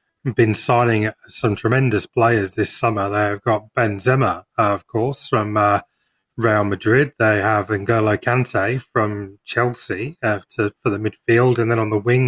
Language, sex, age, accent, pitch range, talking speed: English, male, 30-49, British, 105-125 Hz, 165 wpm